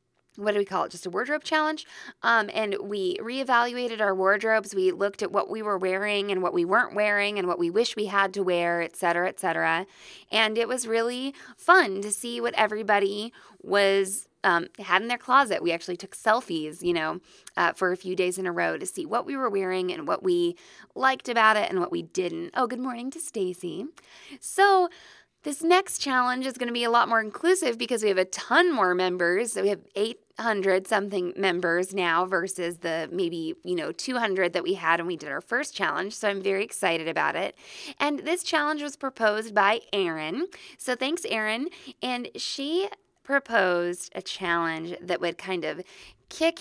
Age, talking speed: 20-39, 200 wpm